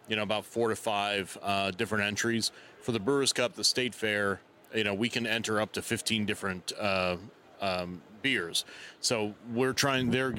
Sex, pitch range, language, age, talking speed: male, 100-115 Hz, English, 30-49, 185 wpm